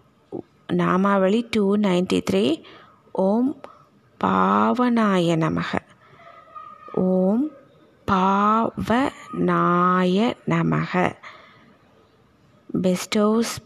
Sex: female